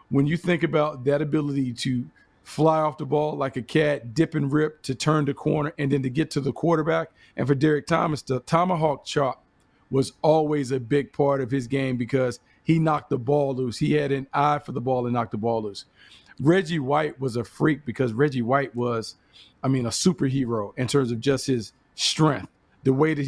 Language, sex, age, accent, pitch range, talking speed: English, male, 40-59, American, 130-155 Hz, 215 wpm